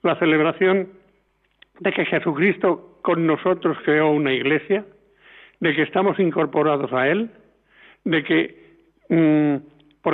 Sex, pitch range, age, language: male, 160-200 Hz, 50-69, Spanish